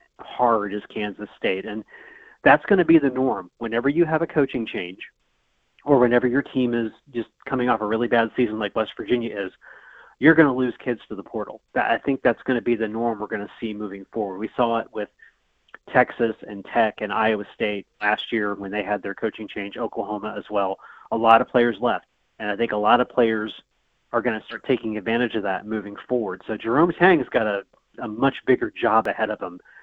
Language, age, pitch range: English, 30-49, 105-125 Hz